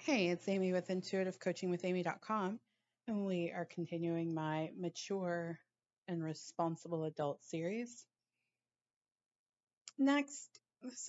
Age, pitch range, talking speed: 30-49, 155-200 Hz, 90 wpm